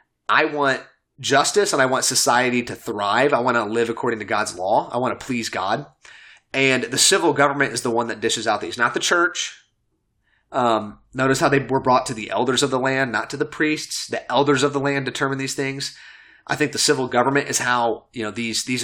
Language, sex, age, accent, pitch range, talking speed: English, male, 30-49, American, 115-140 Hz, 225 wpm